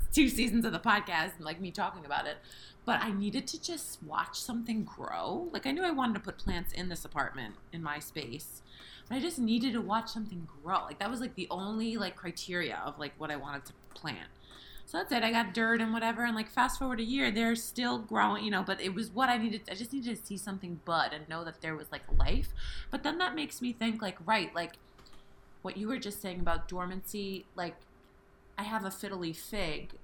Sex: female